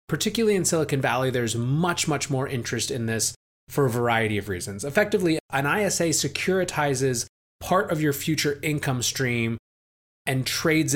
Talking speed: 155 wpm